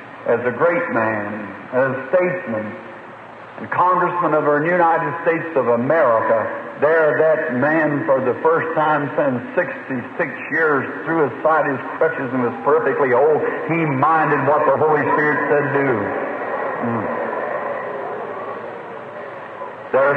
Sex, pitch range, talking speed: male, 130-180 Hz, 130 wpm